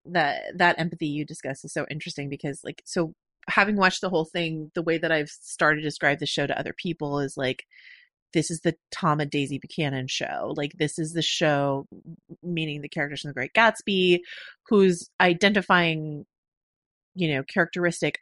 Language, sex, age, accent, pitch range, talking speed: English, female, 30-49, American, 145-185 Hz, 180 wpm